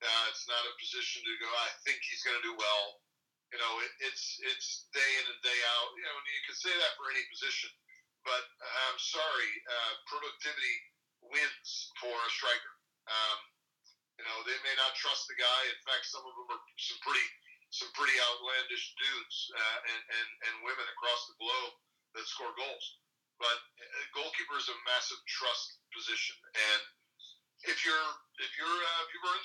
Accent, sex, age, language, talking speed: American, male, 40-59, English, 185 wpm